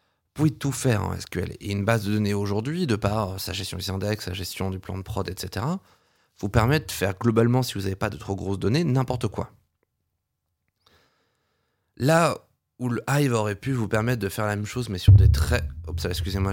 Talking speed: 220 wpm